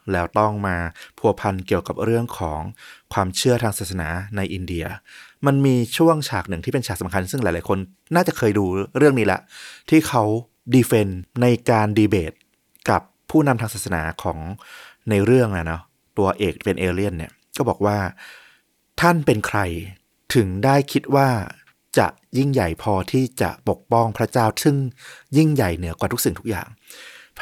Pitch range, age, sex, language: 95-130 Hz, 30-49, male, Thai